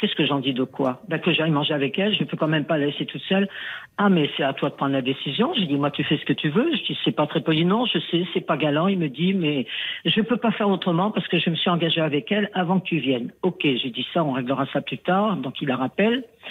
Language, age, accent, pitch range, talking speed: French, 60-79, French, 150-200 Hz, 310 wpm